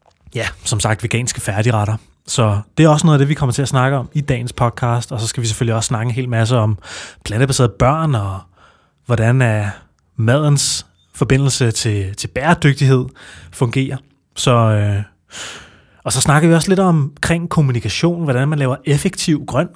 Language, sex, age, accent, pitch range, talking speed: Danish, male, 30-49, native, 115-145 Hz, 175 wpm